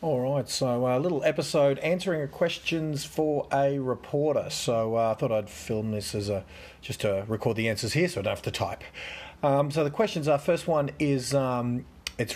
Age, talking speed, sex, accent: 40-59, 210 wpm, male, Australian